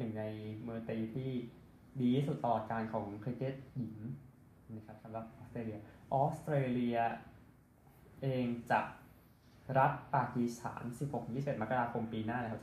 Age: 20-39